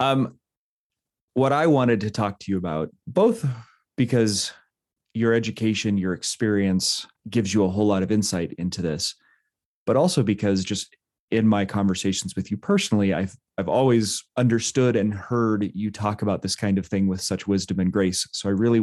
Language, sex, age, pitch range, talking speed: English, male, 30-49, 95-120 Hz, 175 wpm